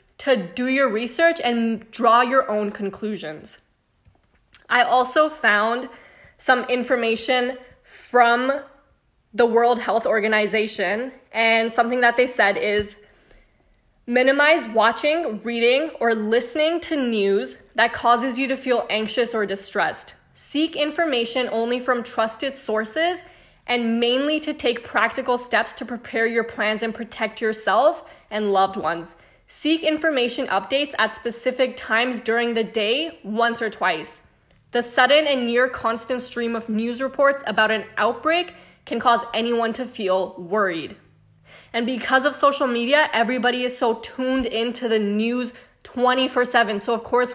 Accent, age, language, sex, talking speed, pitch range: American, 10-29, English, female, 140 wpm, 225-260 Hz